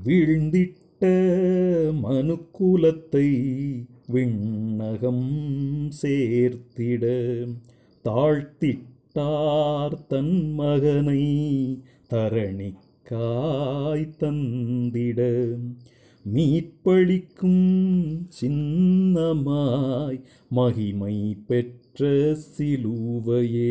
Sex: male